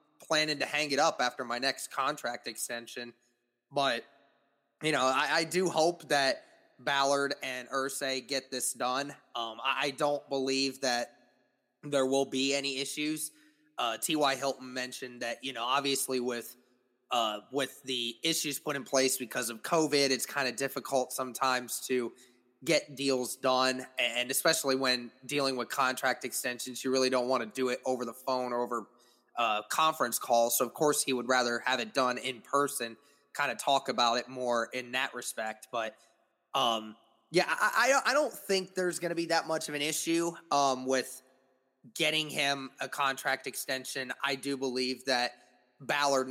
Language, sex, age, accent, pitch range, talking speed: English, male, 20-39, American, 125-145 Hz, 170 wpm